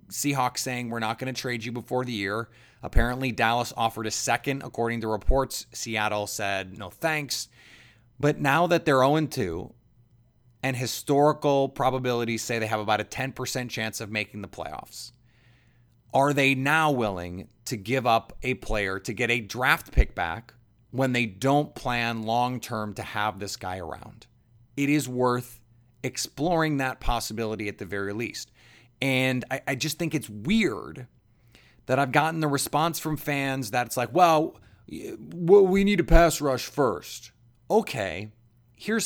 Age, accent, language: 30-49, American, English